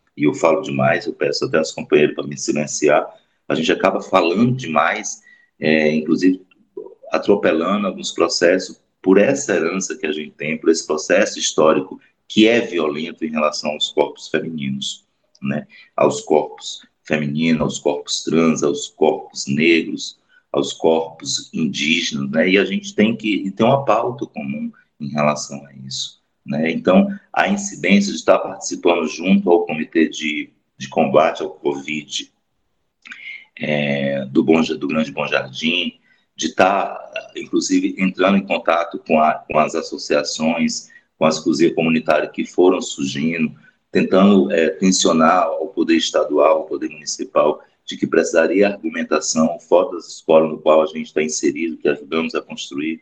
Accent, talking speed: Brazilian, 150 wpm